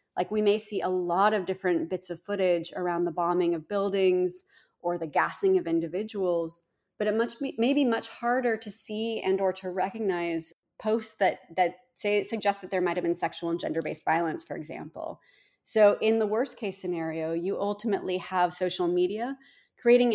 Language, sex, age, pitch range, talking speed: English, female, 30-49, 175-215 Hz, 185 wpm